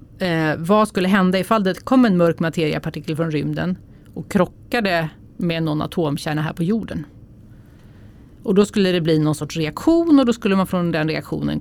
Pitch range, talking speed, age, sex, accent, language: 150-180 Hz, 180 wpm, 30-49, female, native, Swedish